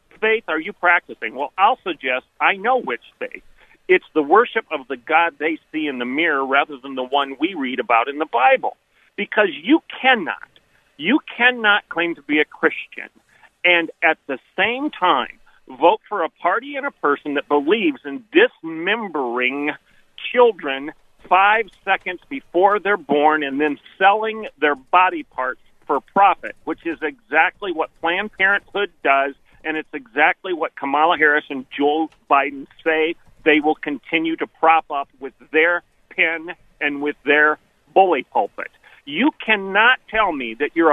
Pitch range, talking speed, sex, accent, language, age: 150-220 Hz, 160 wpm, male, American, English, 40-59